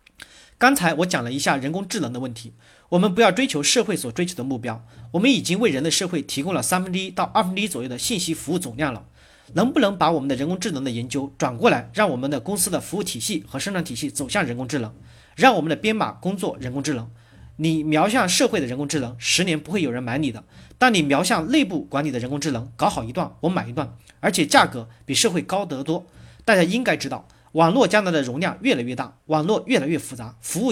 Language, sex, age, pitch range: Chinese, male, 40-59, 135-195 Hz